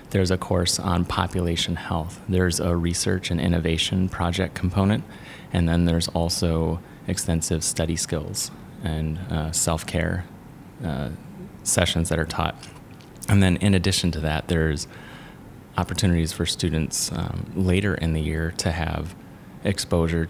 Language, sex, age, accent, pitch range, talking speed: English, male, 30-49, American, 80-95 Hz, 135 wpm